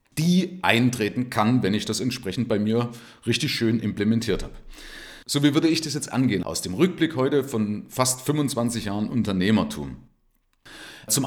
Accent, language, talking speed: German, German, 160 wpm